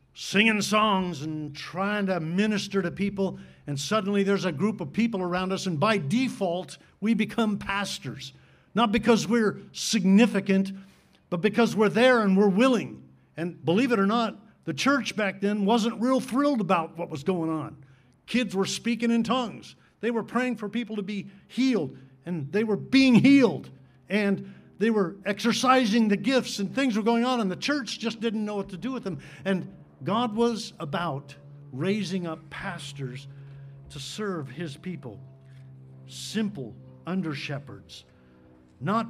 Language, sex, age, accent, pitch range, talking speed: English, male, 50-69, American, 160-225 Hz, 160 wpm